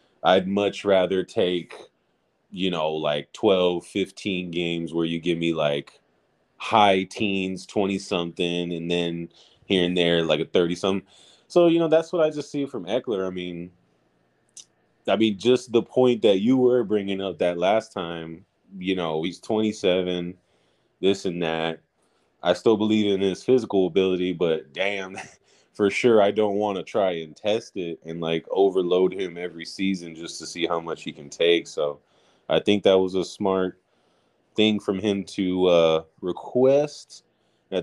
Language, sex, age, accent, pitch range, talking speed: English, male, 20-39, American, 85-105 Hz, 165 wpm